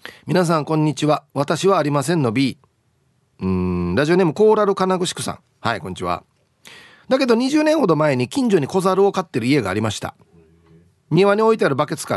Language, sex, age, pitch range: Japanese, male, 40-59, 115-190 Hz